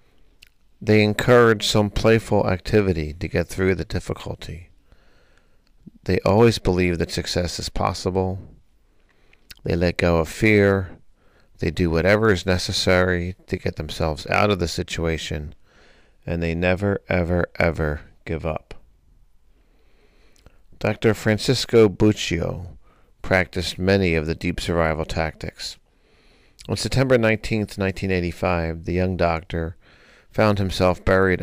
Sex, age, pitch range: male, 50-69, 85-100 Hz